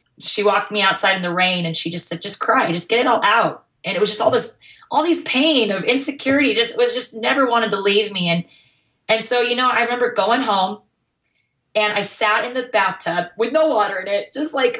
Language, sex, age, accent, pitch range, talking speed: English, female, 20-39, American, 170-215 Hz, 240 wpm